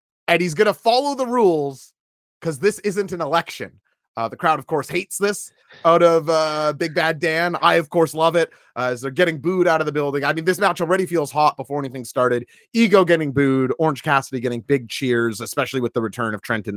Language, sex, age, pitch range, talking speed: English, male, 30-49, 135-195 Hz, 230 wpm